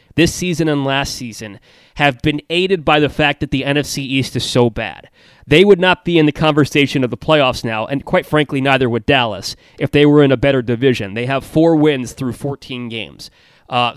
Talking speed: 215 wpm